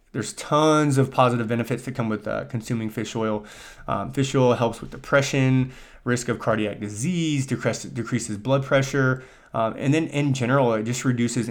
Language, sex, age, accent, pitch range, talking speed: English, male, 20-39, American, 100-130 Hz, 170 wpm